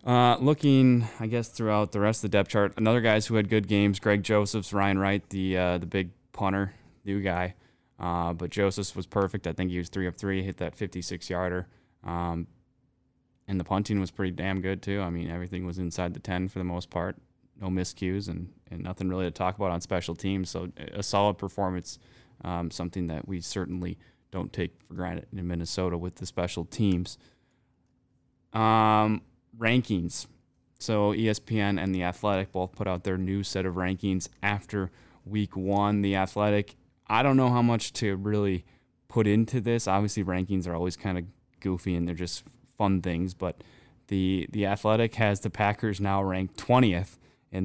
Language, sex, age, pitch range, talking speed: English, male, 20-39, 90-105 Hz, 190 wpm